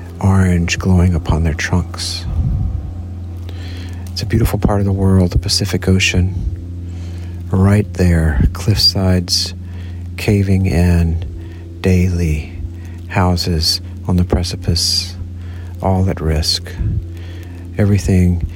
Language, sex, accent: English, male, American